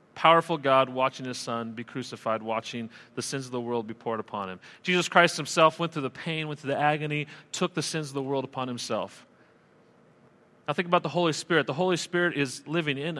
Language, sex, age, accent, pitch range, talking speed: English, male, 40-59, American, 125-165 Hz, 220 wpm